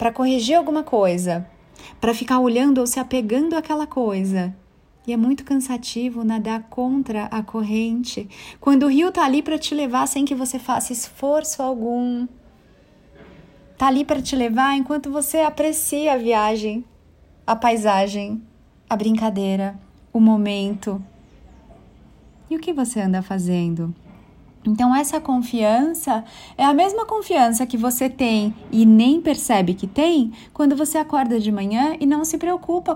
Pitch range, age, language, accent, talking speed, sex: 225-285 Hz, 20-39, Portuguese, Brazilian, 145 wpm, female